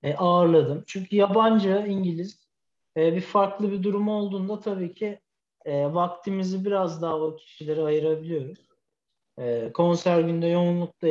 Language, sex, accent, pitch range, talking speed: Turkish, male, native, 155-220 Hz, 130 wpm